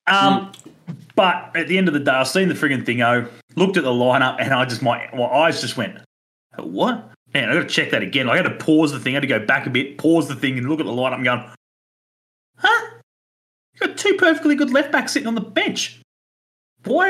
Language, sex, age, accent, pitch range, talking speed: English, male, 30-49, Australian, 115-185 Hz, 240 wpm